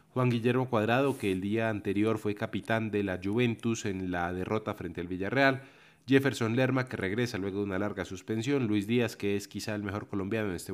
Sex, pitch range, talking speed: male, 105-130 Hz, 205 wpm